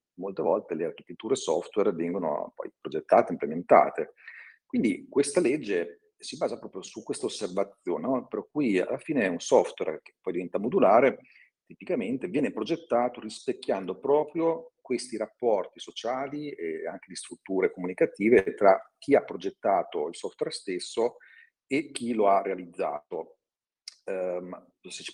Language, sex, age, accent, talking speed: Italian, male, 40-59, native, 135 wpm